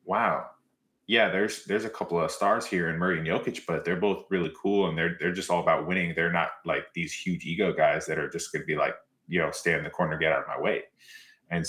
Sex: male